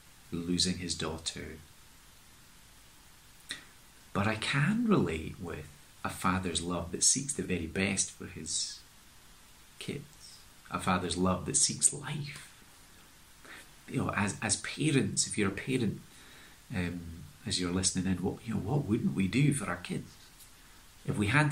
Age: 40-59